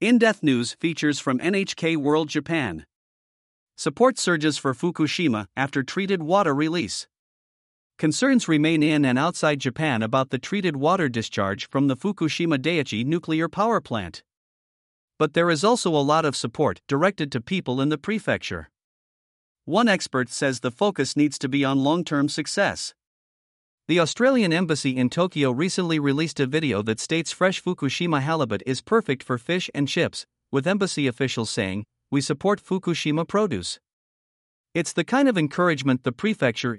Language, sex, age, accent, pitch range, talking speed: English, male, 50-69, American, 135-180 Hz, 150 wpm